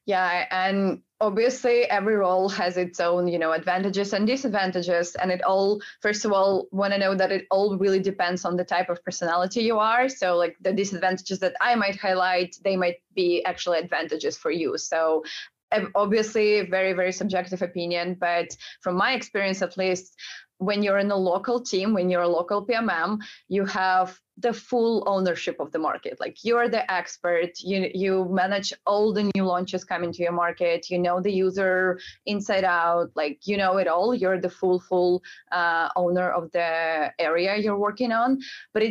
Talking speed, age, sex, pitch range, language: 185 wpm, 20-39, female, 180-210 Hz, English